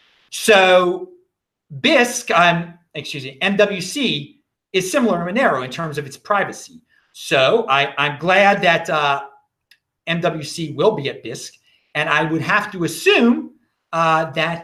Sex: male